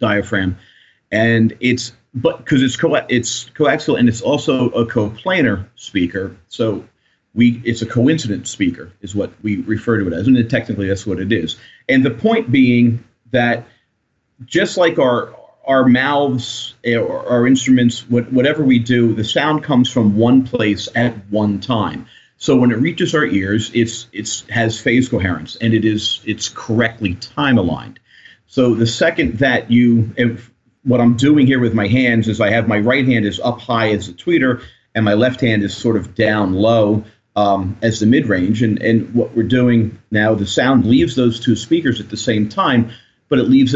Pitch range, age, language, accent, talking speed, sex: 110-125 Hz, 40-59, English, American, 185 wpm, male